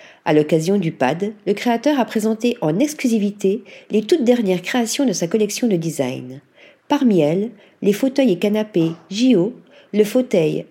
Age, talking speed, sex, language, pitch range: 40-59, 155 wpm, female, French, 170-245 Hz